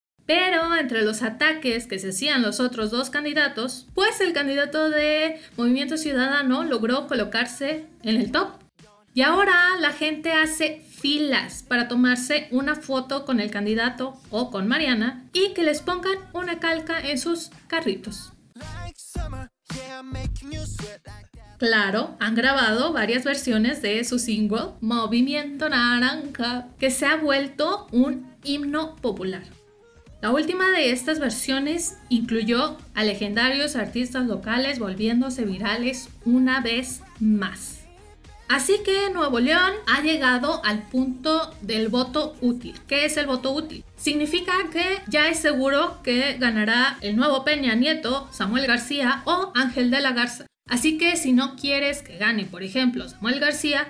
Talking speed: 140 wpm